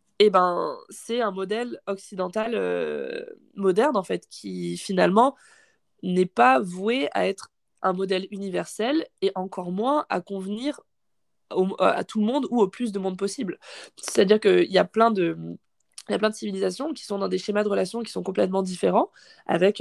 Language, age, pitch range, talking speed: French, 20-39, 185-225 Hz, 170 wpm